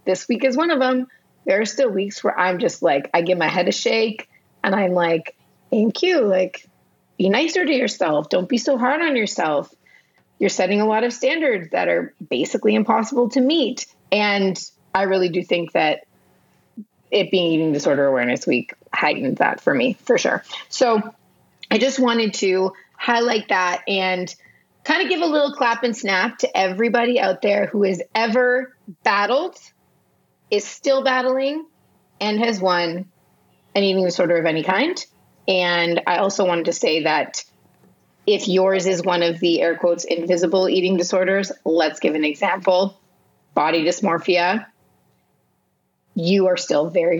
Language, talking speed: English, 165 wpm